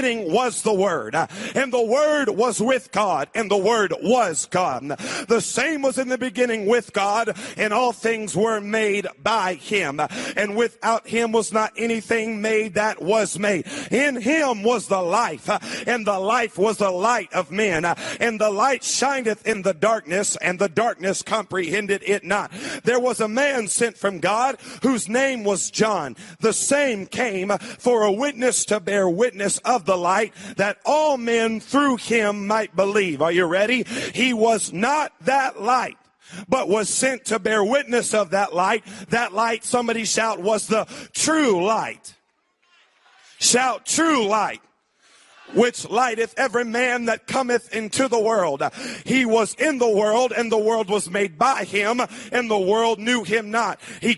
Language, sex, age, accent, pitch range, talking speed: English, male, 40-59, American, 205-245 Hz, 170 wpm